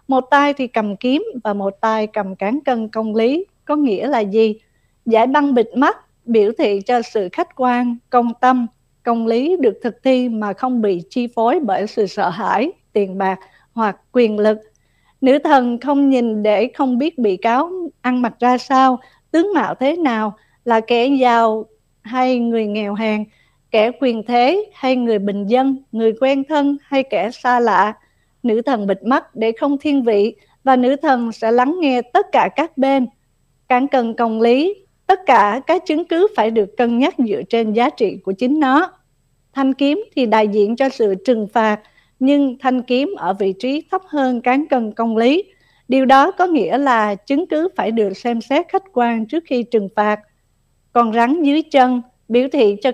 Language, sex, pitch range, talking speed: Vietnamese, female, 220-275 Hz, 190 wpm